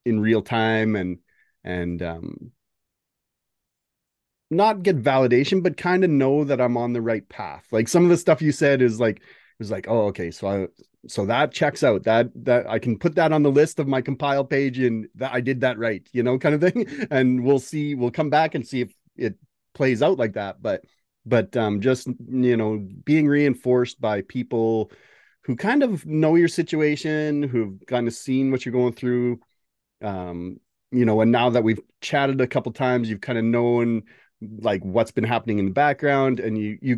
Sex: male